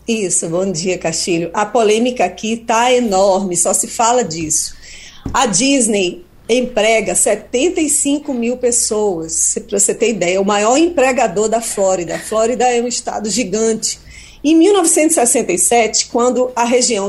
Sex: female